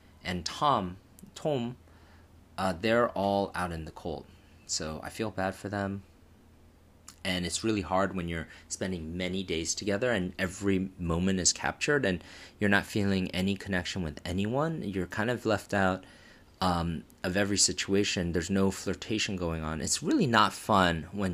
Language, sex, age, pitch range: Korean, male, 30-49, 85-100 Hz